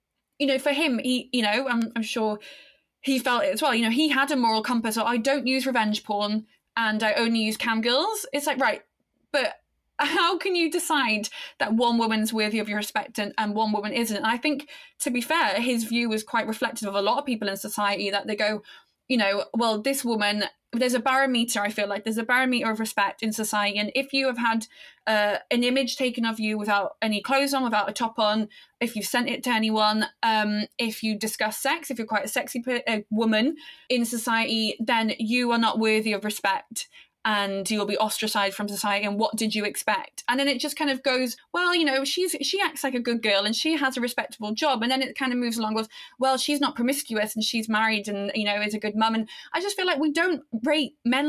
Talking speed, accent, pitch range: 240 wpm, British, 215-275 Hz